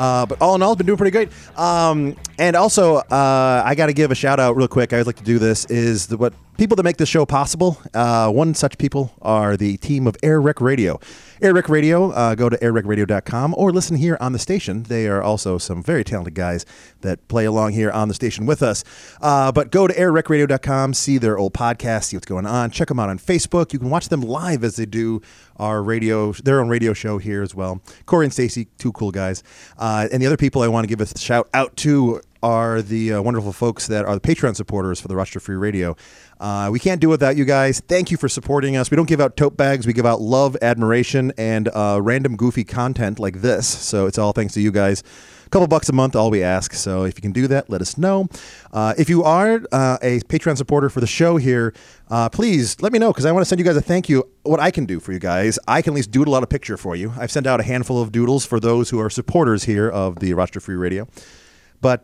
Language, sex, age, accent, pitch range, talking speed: English, male, 30-49, American, 105-145 Hz, 255 wpm